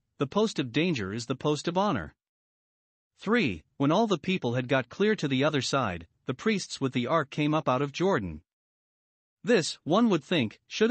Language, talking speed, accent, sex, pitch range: English, 200 wpm, American, male, 125-170 Hz